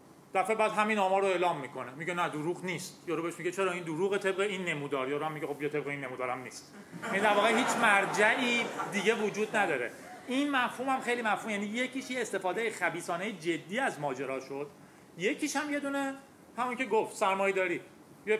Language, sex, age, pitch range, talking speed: Persian, male, 30-49, 165-220 Hz, 185 wpm